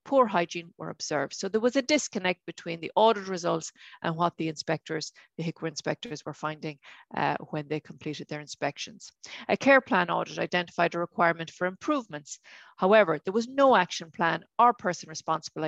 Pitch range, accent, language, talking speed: 165-215 Hz, Irish, English, 175 wpm